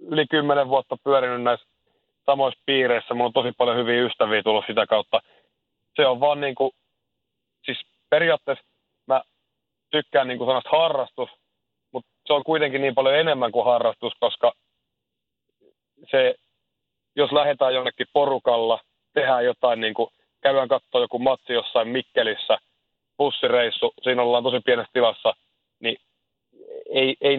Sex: male